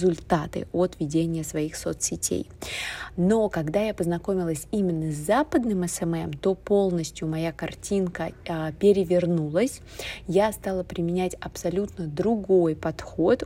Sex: female